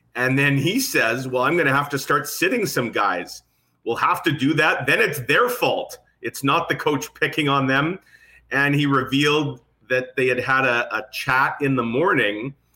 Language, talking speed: English, 200 wpm